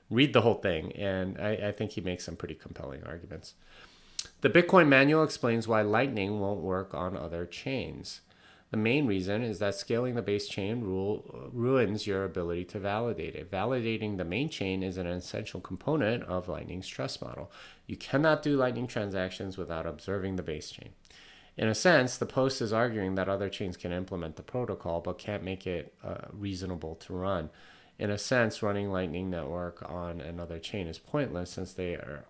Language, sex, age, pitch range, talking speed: English, male, 30-49, 90-120 Hz, 185 wpm